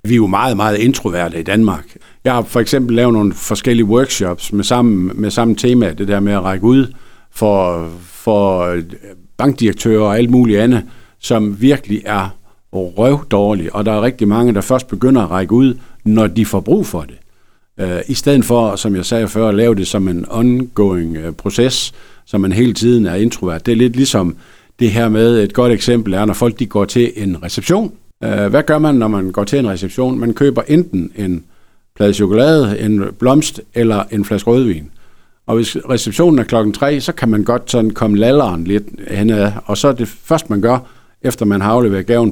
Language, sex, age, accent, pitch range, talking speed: Danish, male, 60-79, native, 100-125 Hz, 200 wpm